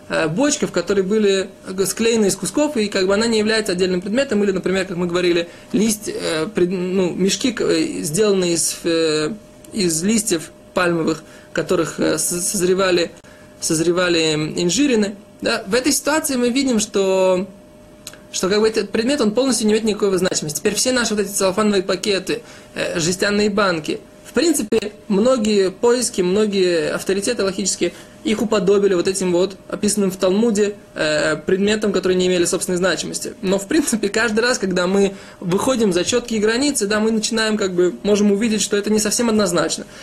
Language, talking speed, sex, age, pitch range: Russian, 155 wpm, male, 20-39, 185-220 Hz